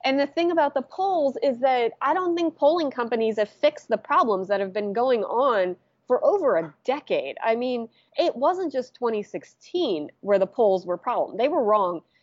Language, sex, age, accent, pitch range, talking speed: English, female, 20-39, American, 190-270 Hz, 195 wpm